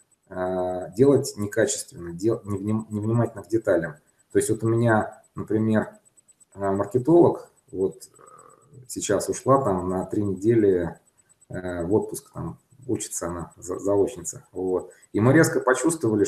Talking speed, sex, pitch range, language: 120 wpm, male, 95-125 Hz, Russian